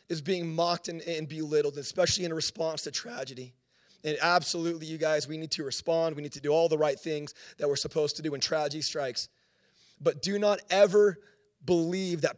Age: 30-49